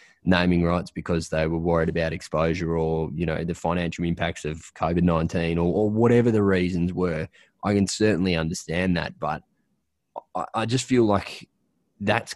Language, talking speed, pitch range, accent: English, 165 wpm, 85-95 Hz, Australian